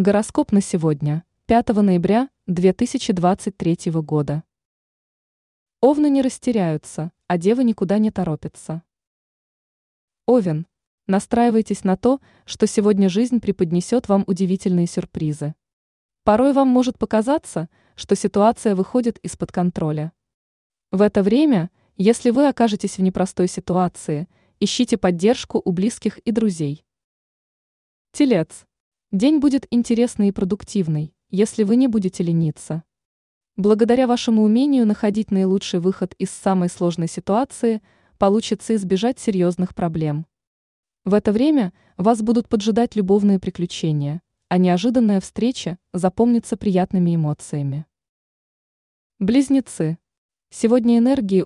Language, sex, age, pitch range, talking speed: Russian, female, 20-39, 175-230 Hz, 105 wpm